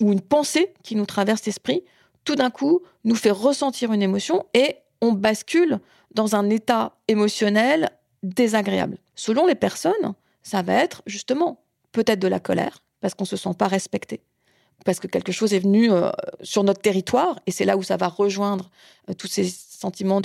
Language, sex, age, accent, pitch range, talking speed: French, female, 40-59, French, 190-225 Hz, 185 wpm